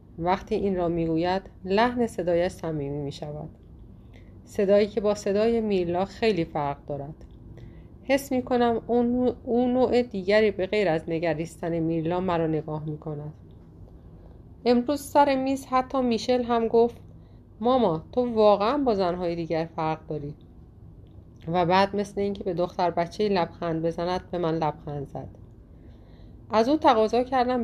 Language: Persian